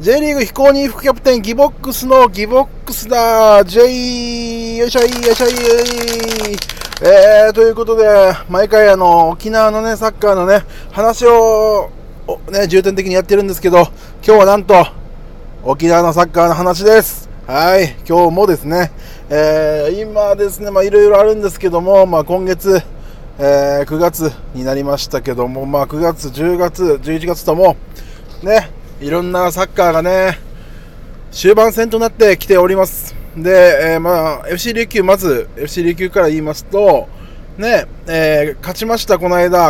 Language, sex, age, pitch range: Japanese, male, 20-39, 165-215 Hz